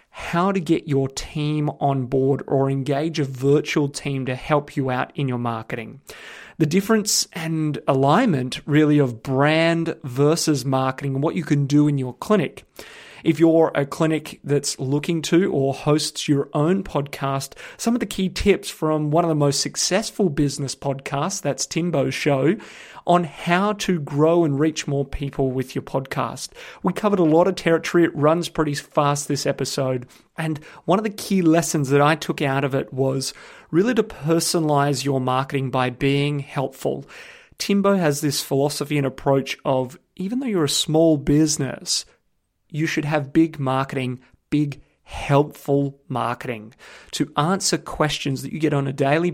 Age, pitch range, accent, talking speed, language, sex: 30-49, 140-165 Hz, Australian, 170 wpm, English, male